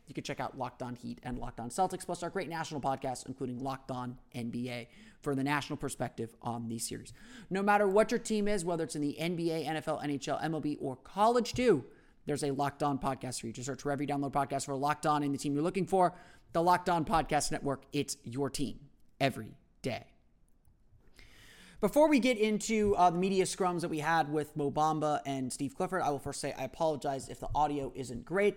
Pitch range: 135-170 Hz